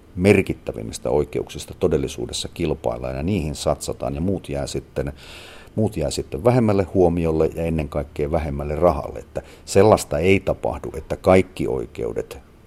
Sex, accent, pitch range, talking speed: male, native, 75-90 Hz, 135 wpm